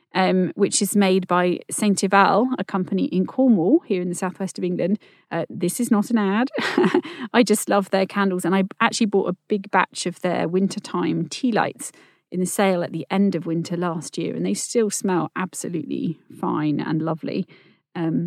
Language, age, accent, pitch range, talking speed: English, 40-59, British, 175-225 Hz, 195 wpm